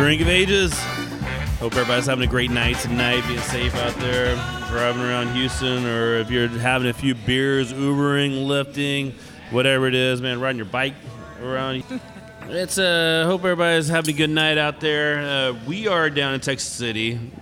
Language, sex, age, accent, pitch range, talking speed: English, male, 30-49, American, 110-135 Hz, 175 wpm